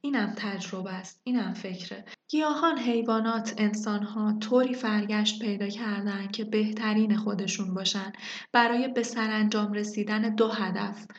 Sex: female